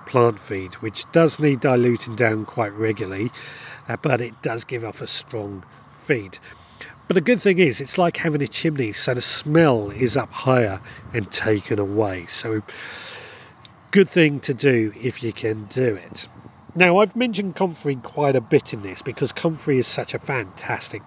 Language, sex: English, male